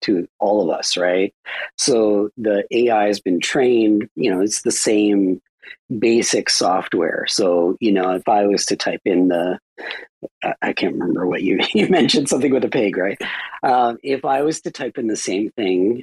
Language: English